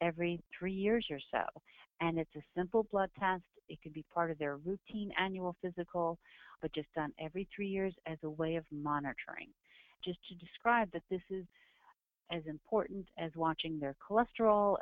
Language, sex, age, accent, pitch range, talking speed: English, female, 50-69, American, 160-200 Hz, 175 wpm